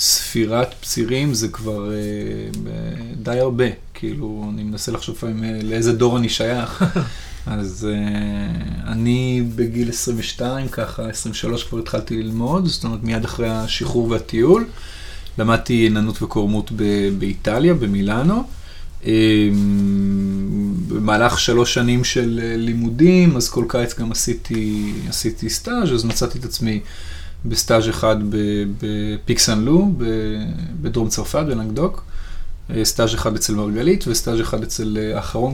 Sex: male